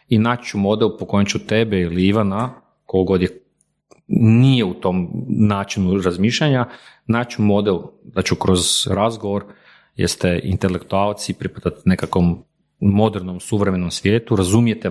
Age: 40-59